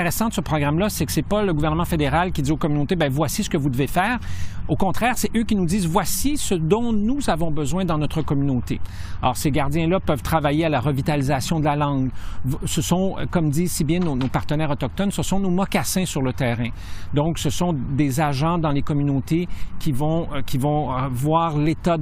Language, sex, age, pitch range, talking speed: French, male, 50-69, 140-175 Hz, 220 wpm